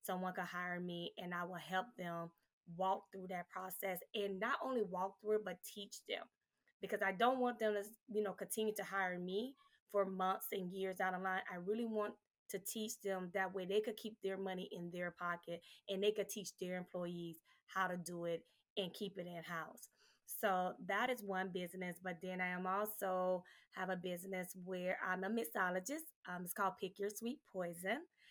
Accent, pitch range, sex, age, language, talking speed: American, 185-220 Hz, female, 20-39, English, 205 wpm